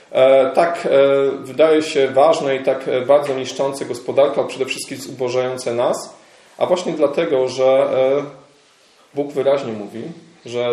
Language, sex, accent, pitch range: Polish, male, native, 115-140 Hz